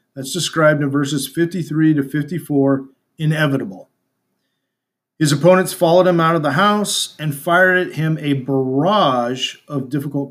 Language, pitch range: English, 135-170 Hz